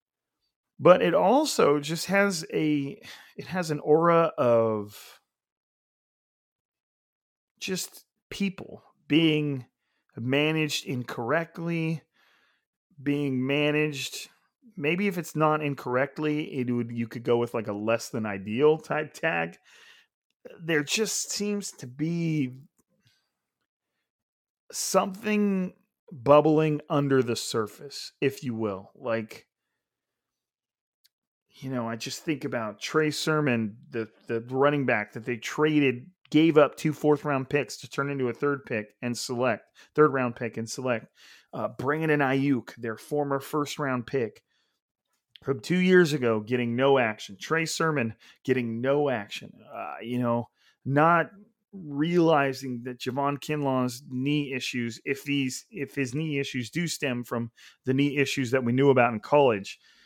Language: English